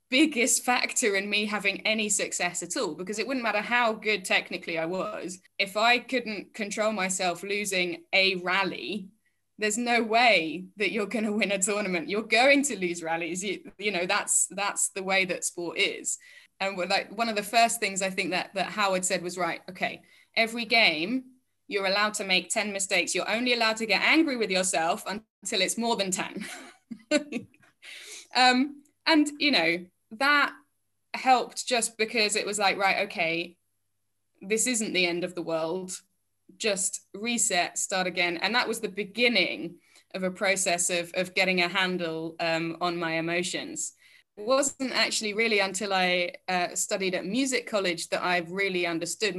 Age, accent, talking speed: 10-29, British, 175 wpm